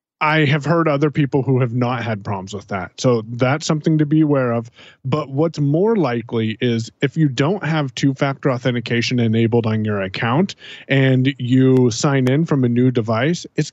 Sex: male